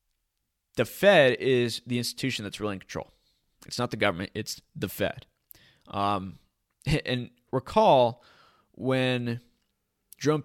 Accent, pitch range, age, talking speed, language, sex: American, 105-135 Hz, 20-39, 120 wpm, English, male